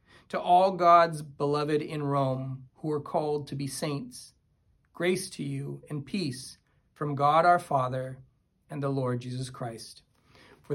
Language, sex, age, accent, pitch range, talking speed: English, male, 40-59, American, 130-170 Hz, 150 wpm